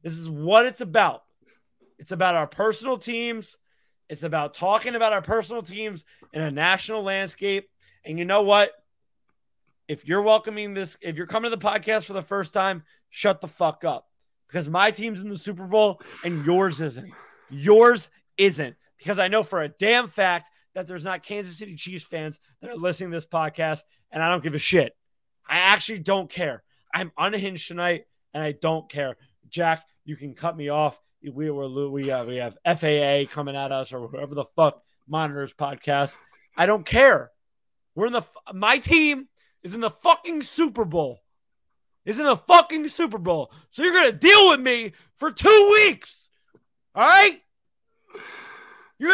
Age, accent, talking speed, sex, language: 20-39, American, 180 wpm, male, English